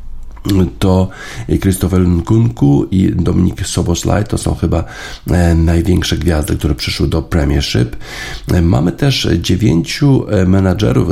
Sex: male